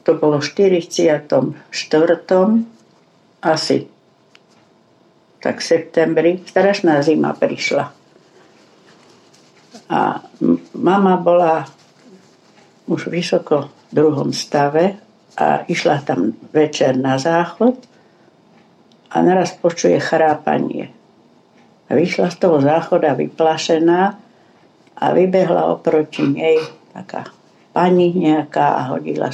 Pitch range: 145-175 Hz